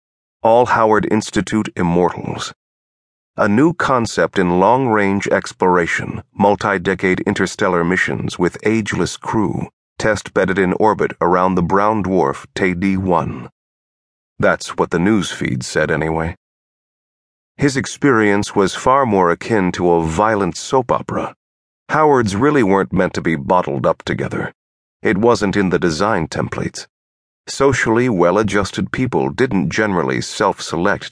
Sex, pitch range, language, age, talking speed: male, 85-105 Hz, English, 40-59, 125 wpm